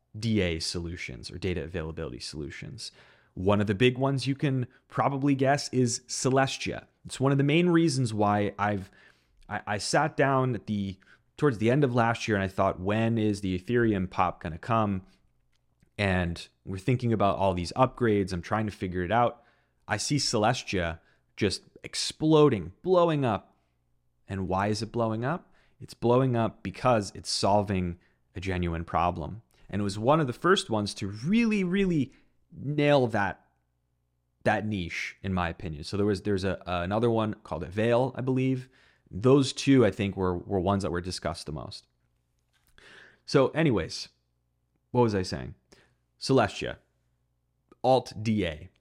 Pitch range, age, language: 90-125 Hz, 30-49, English